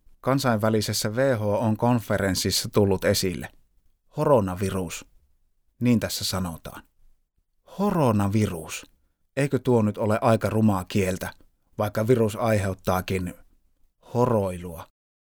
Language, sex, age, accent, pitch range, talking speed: Finnish, male, 30-49, native, 95-120 Hz, 85 wpm